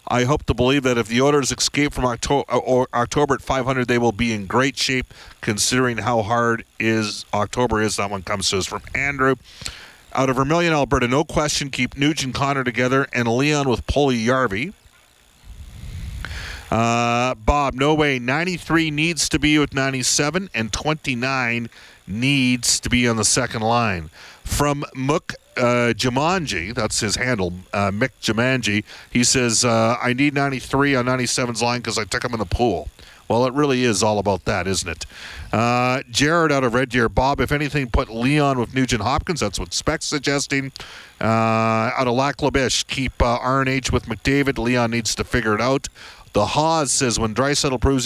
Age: 50-69